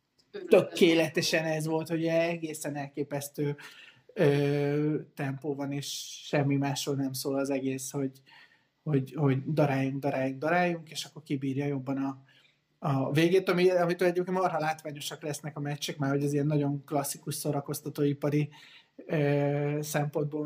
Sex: male